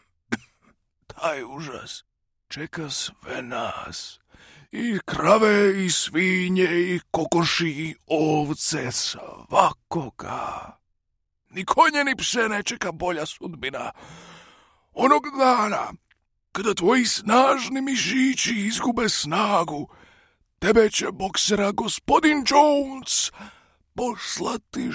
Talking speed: 85 wpm